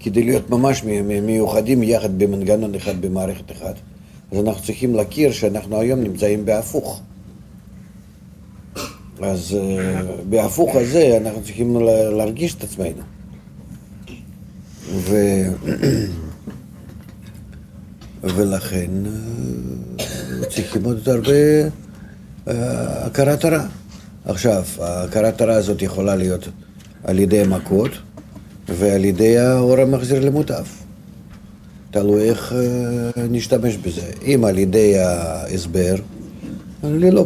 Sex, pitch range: male, 95-120 Hz